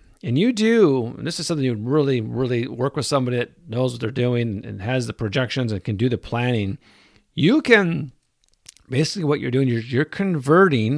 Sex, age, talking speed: male, 50-69, 195 wpm